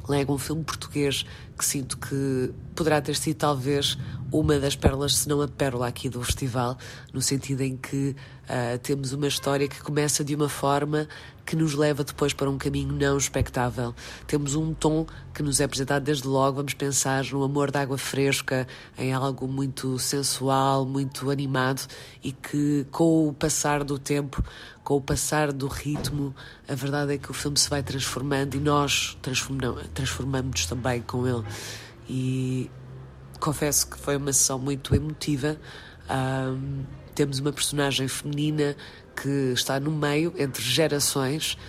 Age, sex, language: 20-39, female, Portuguese